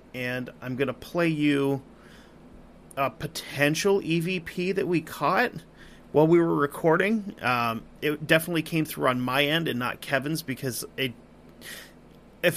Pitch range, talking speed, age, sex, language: 135-165 Hz, 145 wpm, 30-49, male, English